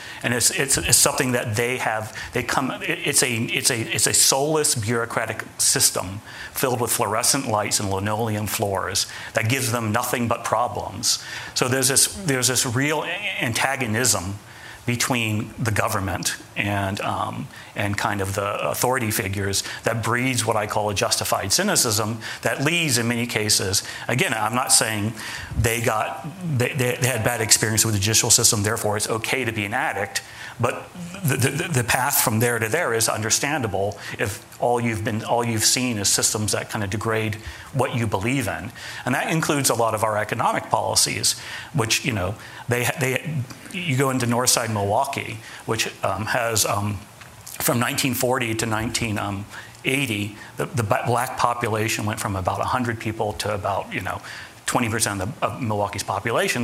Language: English